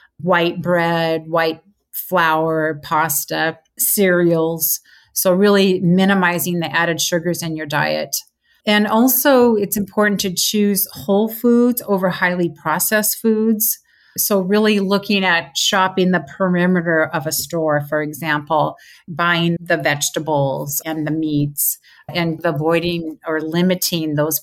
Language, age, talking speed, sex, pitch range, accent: English, 40-59, 125 wpm, female, 165-205 Hz, American